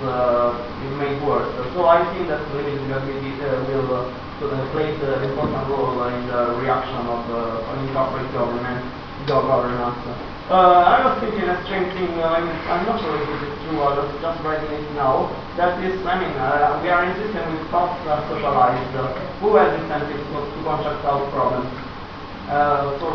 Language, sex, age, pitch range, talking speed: Italian, male, 20-39, 135-155 Hz, 185 wpm